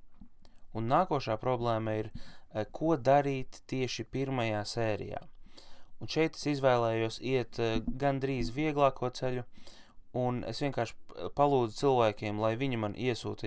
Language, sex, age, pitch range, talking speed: English, male, 20-39, 110-135 Hz, 120 wpm